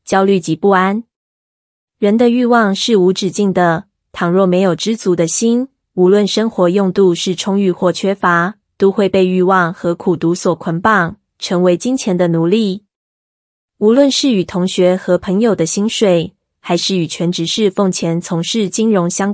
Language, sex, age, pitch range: Chinese, female, 20-39, 175-210 Hz